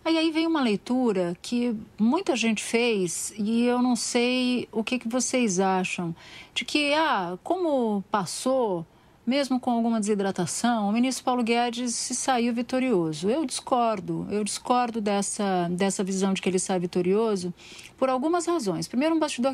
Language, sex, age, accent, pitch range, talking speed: Portuguese, female, 40-59, Brazilian, 205-255 Hz, 155 wpm